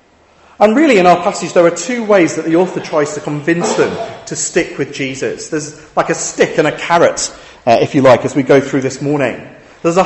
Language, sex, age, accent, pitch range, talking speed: English, male, 40-59, British, 135-190 Hz, 235 wpm